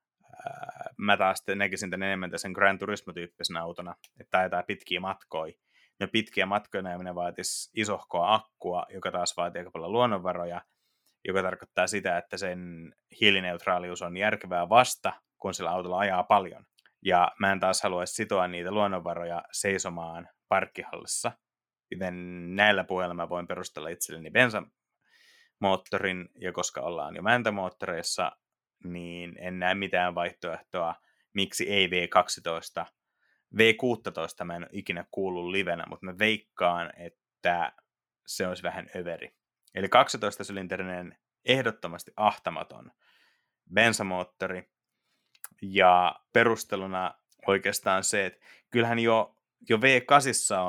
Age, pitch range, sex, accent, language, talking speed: 20-39, 85-100 Hz, male, native, Finnish, 120 wpm